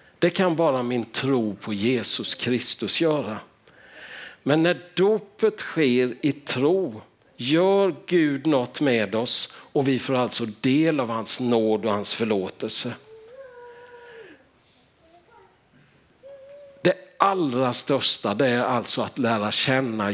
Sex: male